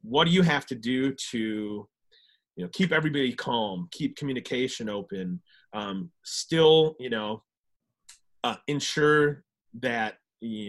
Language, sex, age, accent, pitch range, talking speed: English, male, 30-49, American, 105-150 Hz, 130 wpm